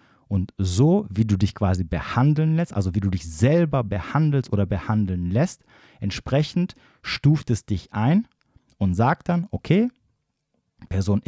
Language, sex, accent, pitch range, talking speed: German, male, German, 95-120 Hz, 145 wpm